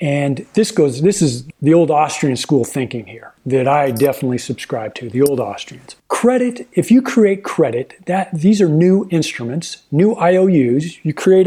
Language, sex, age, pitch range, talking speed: English, male, 40-59, 145-205 Hz, 175 wpm